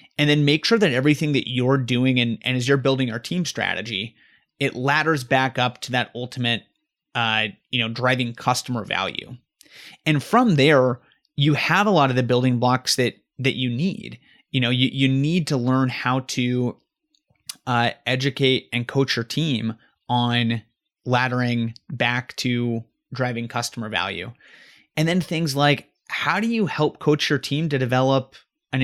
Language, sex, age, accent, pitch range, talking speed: English, male, 30-49, American, 125-145 Hz, 170 wpm